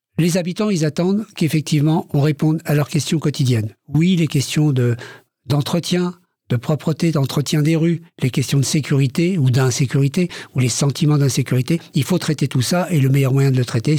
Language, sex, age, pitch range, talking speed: French, male, 60-79, 135-170 Hz, 185 wpm